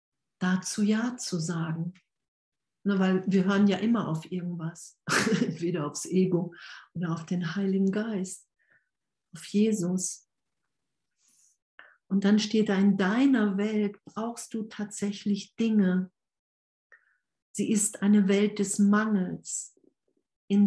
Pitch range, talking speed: 170-200 Hz, 115 wpm